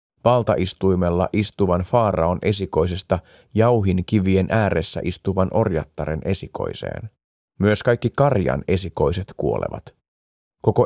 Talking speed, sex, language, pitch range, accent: 90 wpm, male, Finnish, 90-110 Hz, native